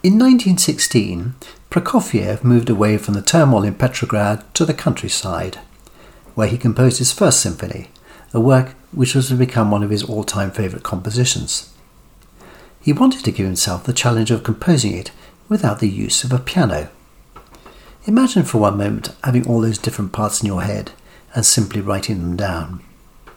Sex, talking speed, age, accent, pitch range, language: male, 165 wpm, 60-79, British, 105-130 Hz, English